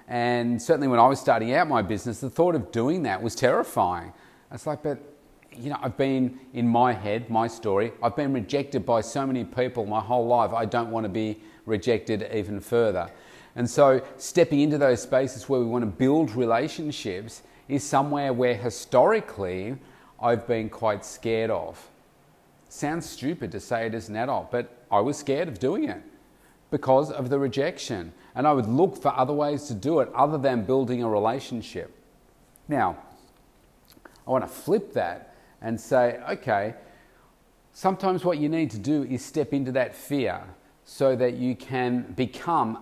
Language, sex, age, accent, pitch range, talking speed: English, male, 40-59, Australian, 115-140 Hz, 175 wpm